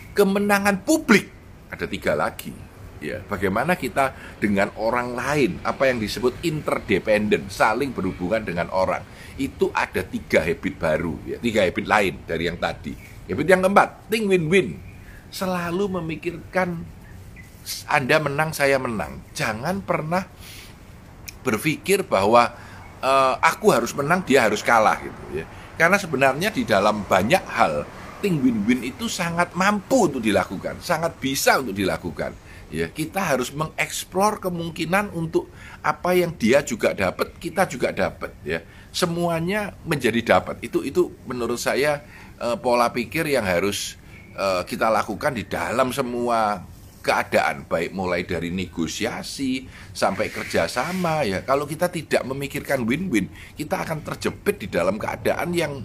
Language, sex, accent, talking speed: Indonesian, male, native, 135 wpm